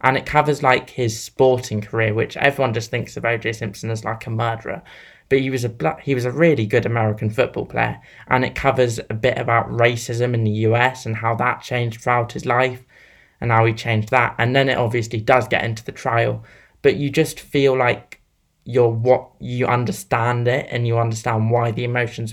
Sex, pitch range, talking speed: male, 115-130 Hz, 205 wpm